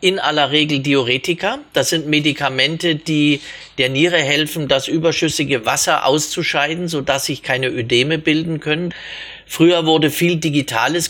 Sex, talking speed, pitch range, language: male, 135 wpm, 135-165 Hz, German